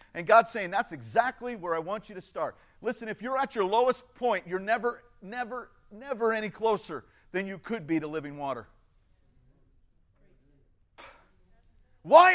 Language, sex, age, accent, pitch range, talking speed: English, male, 50-69, American, 160-265 Hz, 155 wpm